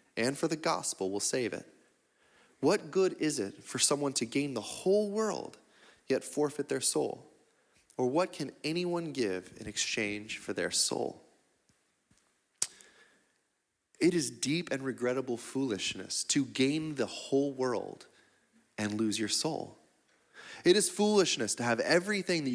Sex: male